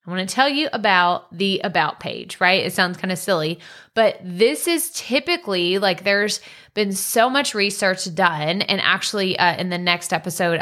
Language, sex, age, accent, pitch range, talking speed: English, female, 20-39, American, 175-215 Hz, 175 wpm